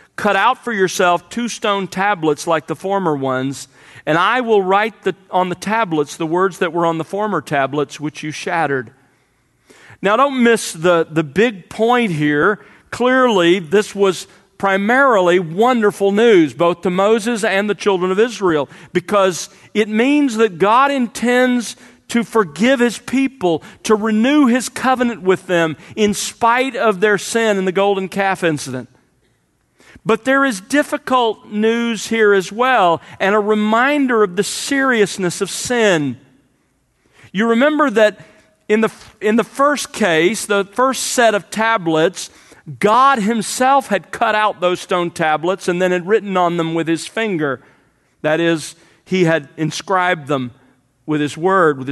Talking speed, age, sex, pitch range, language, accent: 155 wpm, 40-59, male, 170-225 Hz, English, American